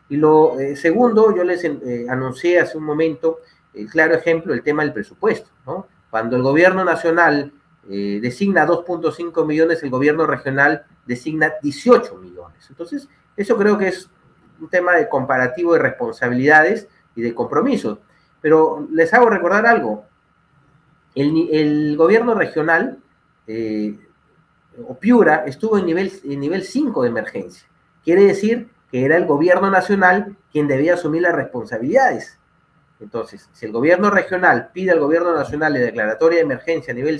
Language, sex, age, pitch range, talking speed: Spanish, male, 40-59, 140-180 Hz, 150 wpm